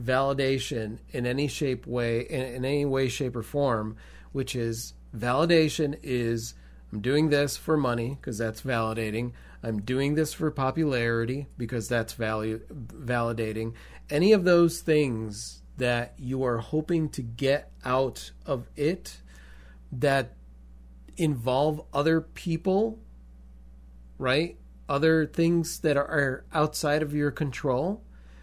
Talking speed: 125 wpm